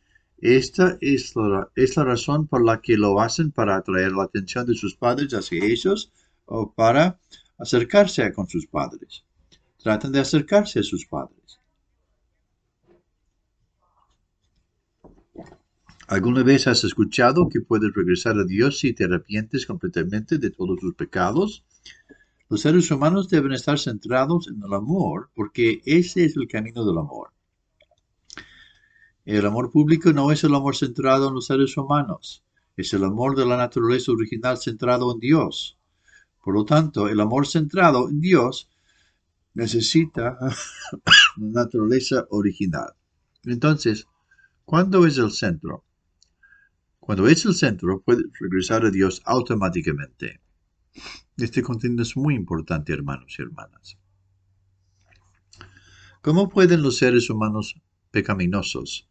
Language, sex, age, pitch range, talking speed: English, male, 60-79, 105-150 Hz, 130 wpm